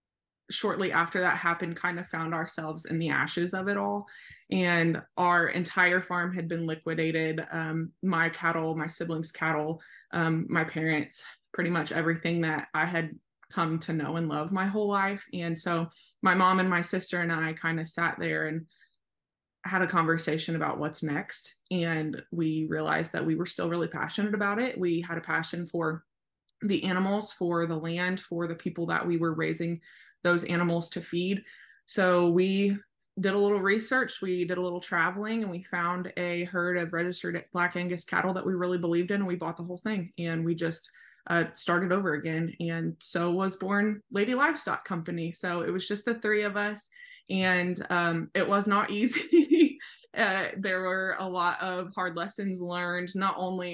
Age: 20-39